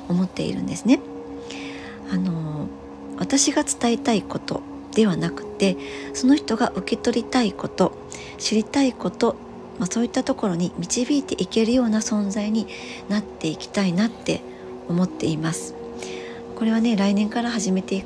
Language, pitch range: Japanese, 155-220 Hz